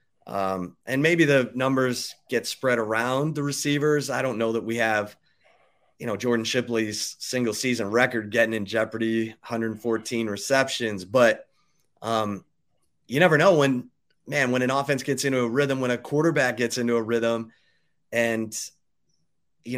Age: 30-49